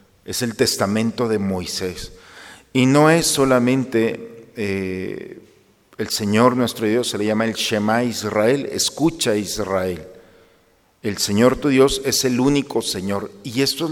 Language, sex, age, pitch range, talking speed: Spanish, male, 50-69, 110-140 Hz, 140 wpm